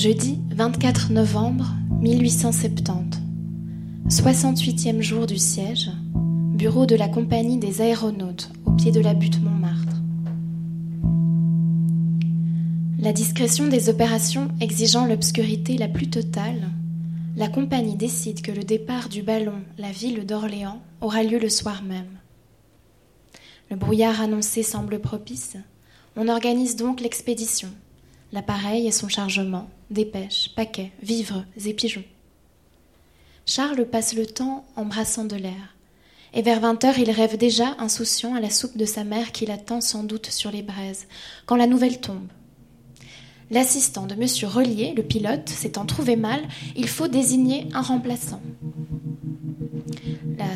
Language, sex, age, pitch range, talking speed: French, female, 20-39, 160-225 Hz, 130 wpm